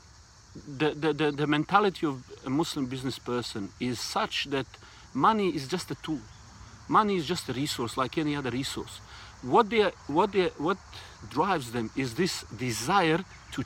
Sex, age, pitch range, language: male, 50-69, 120-160 Hz, English